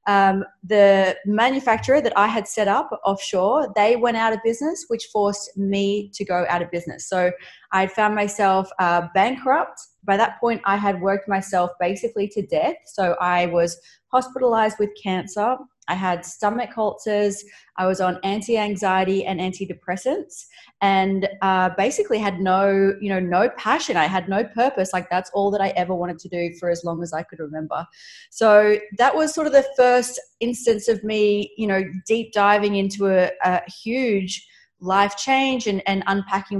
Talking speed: 175 wpm